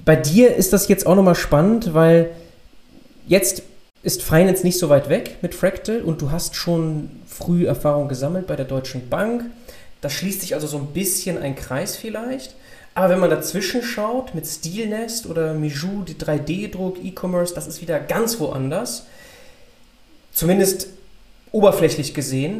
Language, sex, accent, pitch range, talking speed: German, male, German, 150-190 Hz, 155 wpm